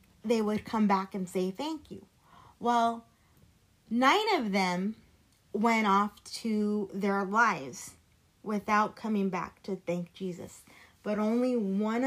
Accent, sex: American, female